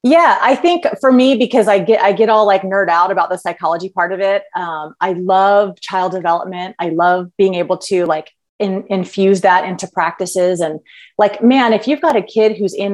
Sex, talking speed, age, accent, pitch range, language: female, 210 wpm, 30-49, American, 175-225 Hz, English